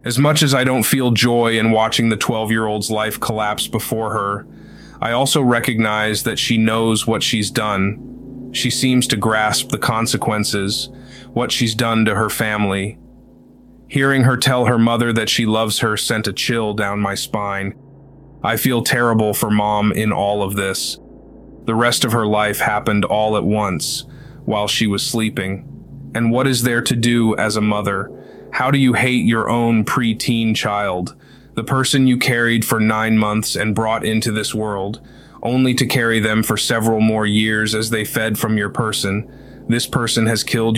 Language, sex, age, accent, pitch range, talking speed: English, male, 30-49, American, 105-120 Hz, 175 wpm